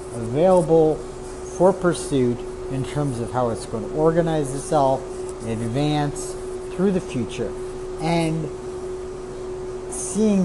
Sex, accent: male, American